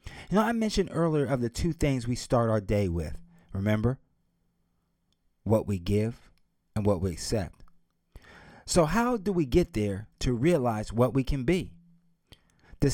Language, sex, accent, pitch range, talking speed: English, male, American, 85-130 Hz, 160 wpm